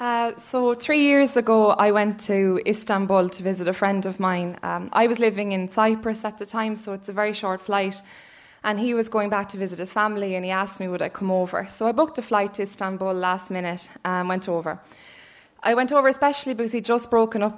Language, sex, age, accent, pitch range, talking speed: English, female, 20-39, Irish, 185-215 Hz, 230 wpm